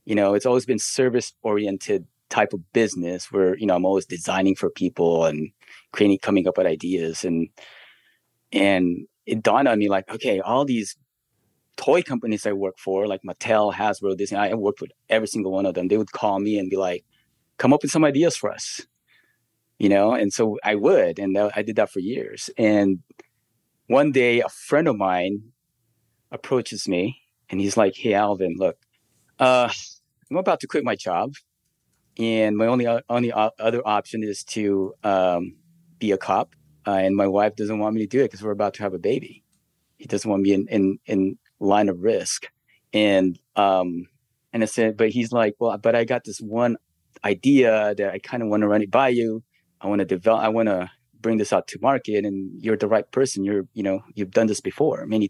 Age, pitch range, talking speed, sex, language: 30-49, 100-115 Hz, 205 wpm, male, English